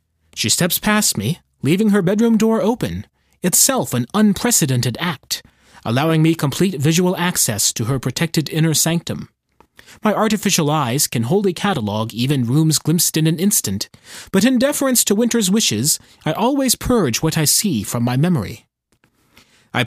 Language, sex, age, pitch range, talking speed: English, male, 30-49, 125-205 Hz, 155 wpm